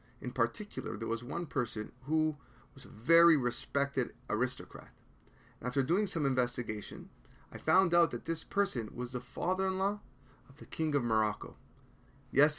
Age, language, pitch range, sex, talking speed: 30-49, English, 120-155 Hz, male, 150 wpm